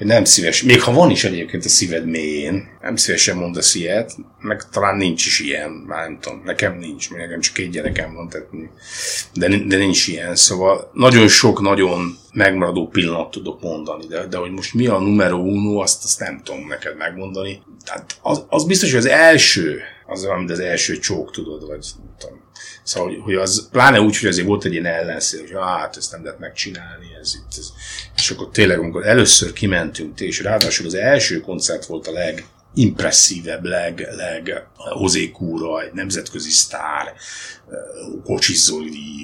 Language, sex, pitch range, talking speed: Hungarian, male, 85-100 Hz, 165 wpm